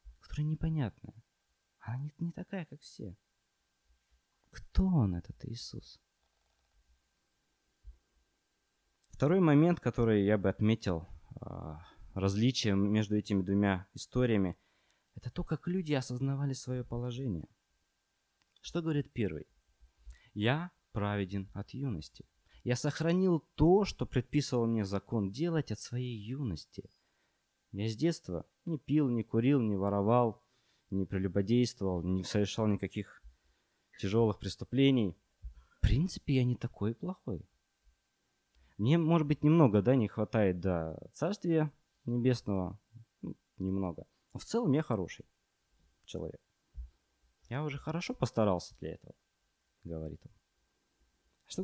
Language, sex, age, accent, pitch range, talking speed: Russian, male, 20-39, native, 90-135 Hz, 115 wpm